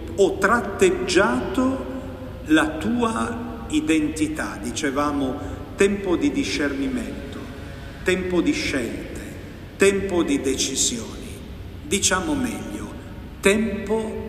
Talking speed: 75 wpm